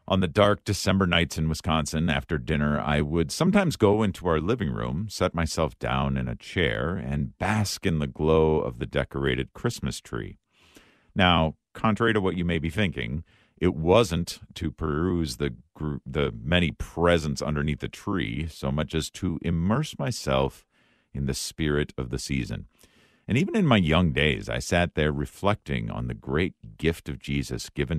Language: English